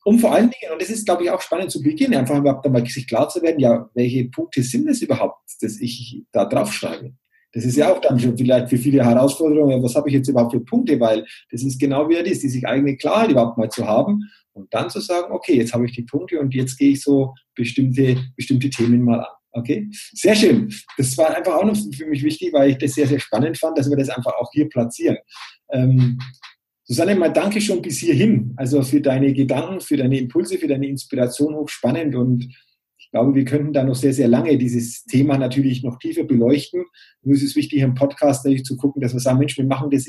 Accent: German